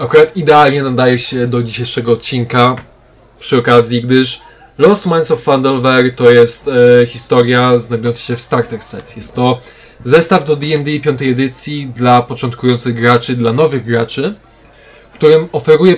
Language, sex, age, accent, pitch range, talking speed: Polish, male, 20-39, native, 120-160 Hz, 145 wpm